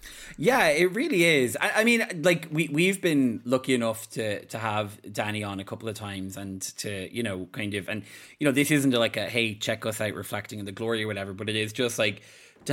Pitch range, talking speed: 105-130 Hz, 240 wpm